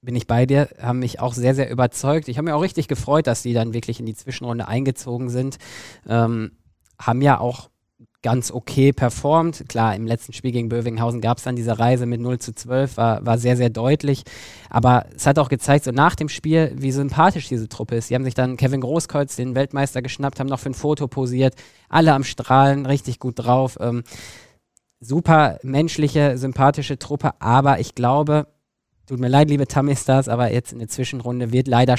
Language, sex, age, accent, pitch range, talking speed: German, male, 20-39, German, 115-135 Hz, 200 wpm